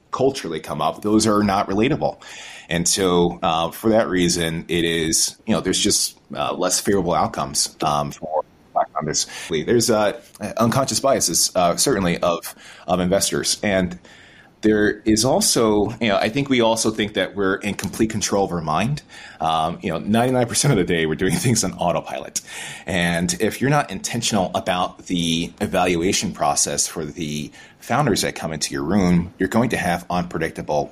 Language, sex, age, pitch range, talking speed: English, male, 30-49, 85-110 Hz, 175 wpm